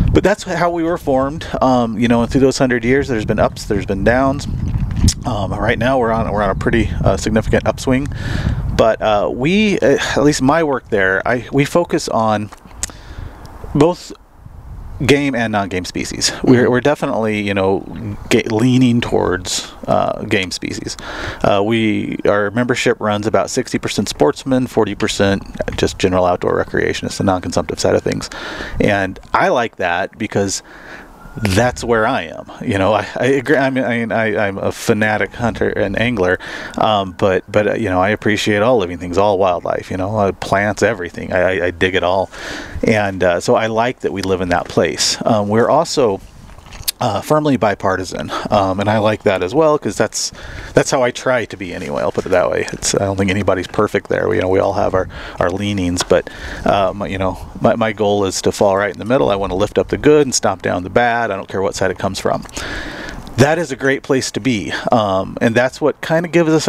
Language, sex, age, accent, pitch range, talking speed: English, male, 30-49, American, 100-130 Hz, 205 wpm